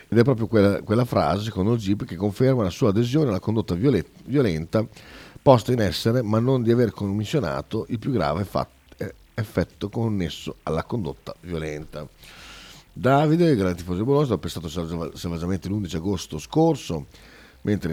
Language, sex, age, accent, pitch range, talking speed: Italian, male, 40-59, native, 85-115 Hz, 155 wpm